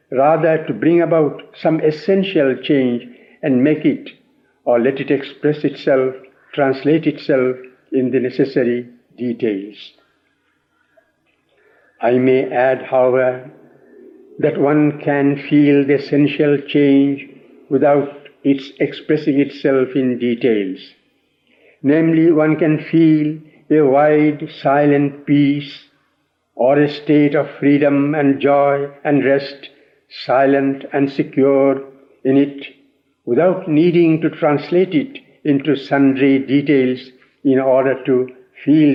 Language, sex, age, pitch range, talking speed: English, male, 60-79, 135-155 Hz, 110 wpm